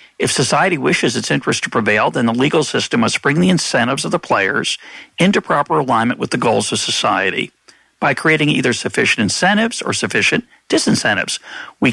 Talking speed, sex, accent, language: 175 wpm, male, American, English